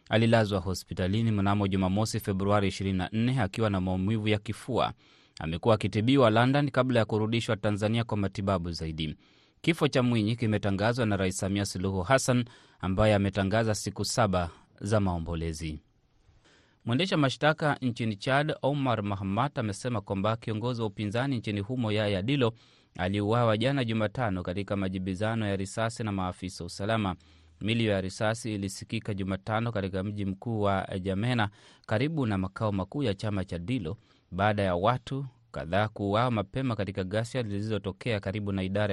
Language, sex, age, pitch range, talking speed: Swahili, male, 30-49, 95-115 Hz, 140 wpm